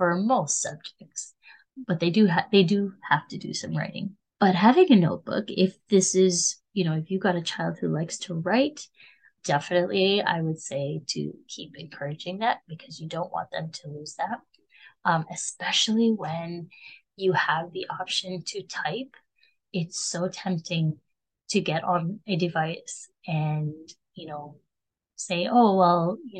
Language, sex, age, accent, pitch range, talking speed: English, female, 20-39, American, 160-205 Hz, 165 wpm